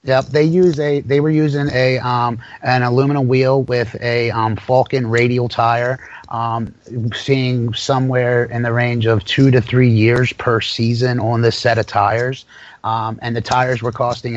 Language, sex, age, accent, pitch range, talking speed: English, male, 30-49, American, 110-125 Hz, 175 wpm